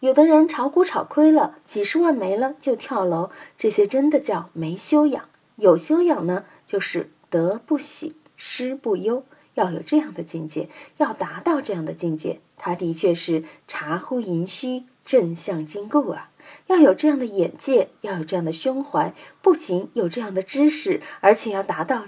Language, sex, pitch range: Chinese, female, 185-295 Hz